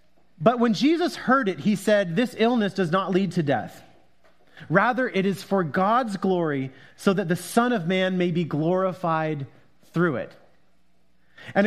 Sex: male